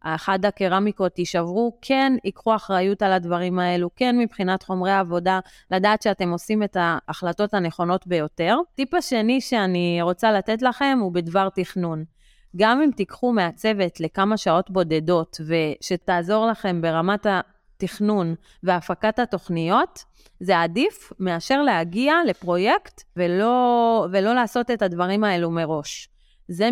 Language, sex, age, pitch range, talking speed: Hebrew, female, 30-49, 175-230 Hz, 125 wpm